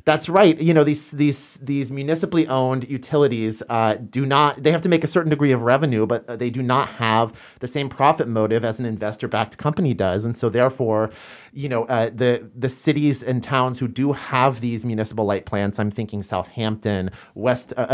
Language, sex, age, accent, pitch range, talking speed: English, male, 30-49, American, 115-150 Hz, 200 wpm